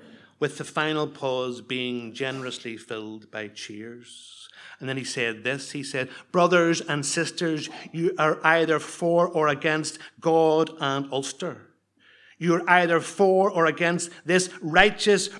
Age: 60-79